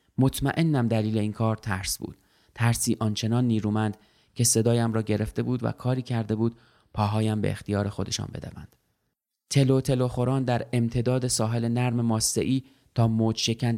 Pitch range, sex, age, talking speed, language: 105-120 Hz, male, 30-49, 150 wpm, Persian